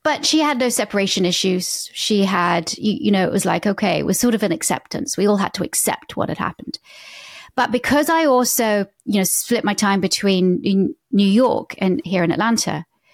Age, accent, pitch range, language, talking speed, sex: 30-49, British, 195-245 Hz, English, 205 wpm, female